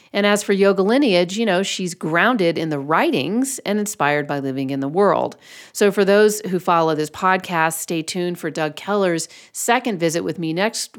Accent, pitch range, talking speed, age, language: American, 150-205 Hz, 195 wpm, 40-59, English